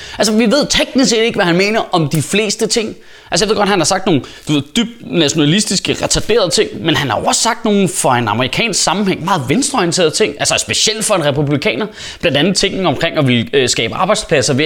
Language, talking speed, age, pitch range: Danish, 225 wpm, 20-39, 145-210 Hz